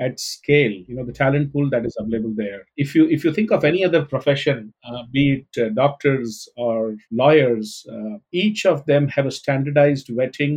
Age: 50-69